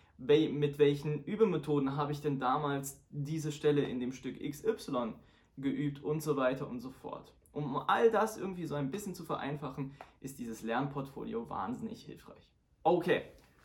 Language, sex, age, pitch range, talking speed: German, male, 20-39, 130-155 Hz, 155 wpm